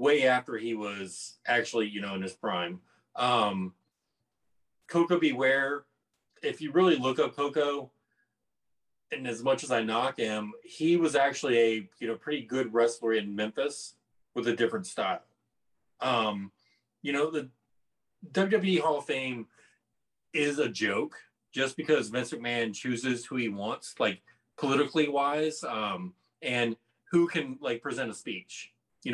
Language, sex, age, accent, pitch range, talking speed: English, male, 30-49, American, 110-145 Hz, 150 wpm